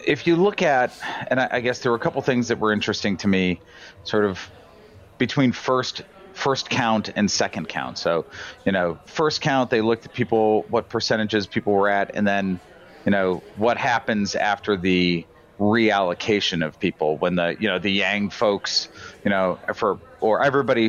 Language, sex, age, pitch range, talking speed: English, male, 40-59, 100-125 Hz, 185 wpm